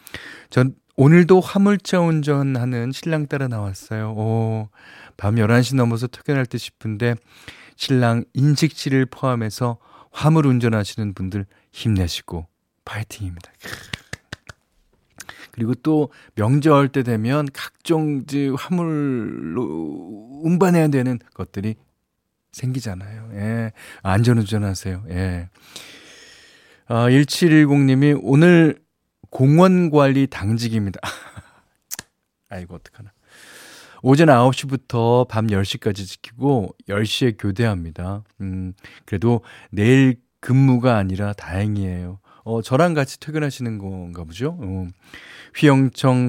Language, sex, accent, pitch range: Korean, male, native, 100-135 Hz